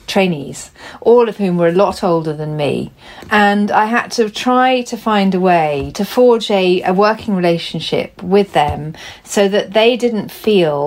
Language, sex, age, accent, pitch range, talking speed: English, female, 40-59, British, 165-205 Hz, 175 wpm